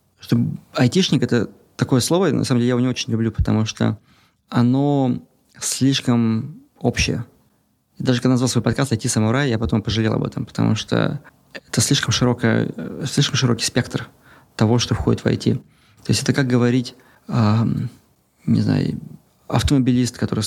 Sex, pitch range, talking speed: male, 110-130 Hz, 160 wpm